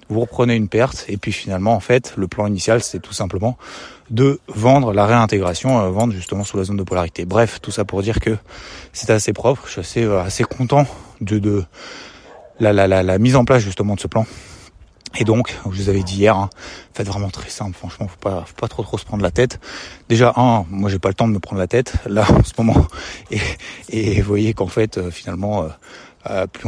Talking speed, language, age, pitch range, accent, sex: 240 wpm, French, 20-39, 90-110 Hz, French, male